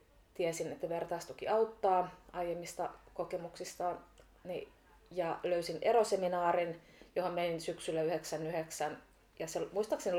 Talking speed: 100 wpm